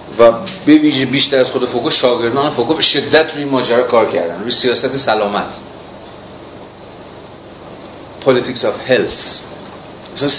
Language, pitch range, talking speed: Persian, 110-135 Hz, 120 wpm